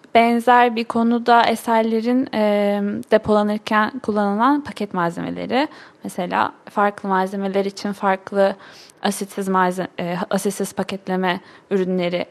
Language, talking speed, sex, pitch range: Turkish, 95 wpm, female, 195-230 Hz